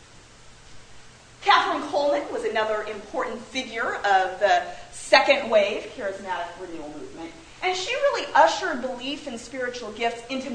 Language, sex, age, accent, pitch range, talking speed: English, female, 40-59, American, 220-295 Hz, 125 wpm